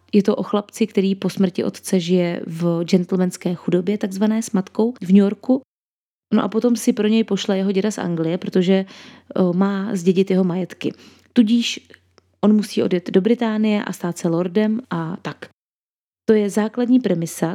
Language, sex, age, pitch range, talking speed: Czech, female, 20-39, 185-215 Hz, 170 wpm